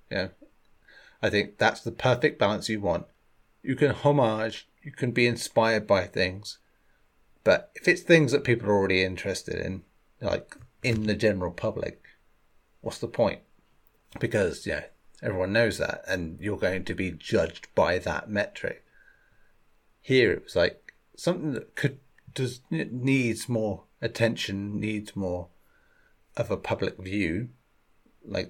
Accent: British